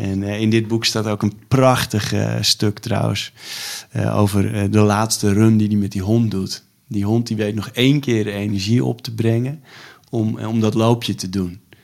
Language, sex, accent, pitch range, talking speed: Dutch, male, Dutch, 100-120 Hz, 210 wpm